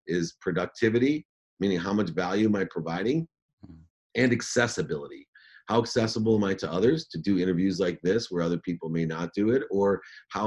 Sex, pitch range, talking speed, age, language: male, 85-100 Hz, 180 wpm, 40-59, English